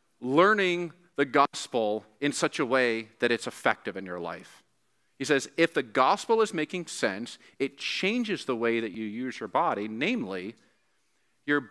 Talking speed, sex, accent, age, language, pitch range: 165 wpm, male, American, 40-59, English, 115-155 Hz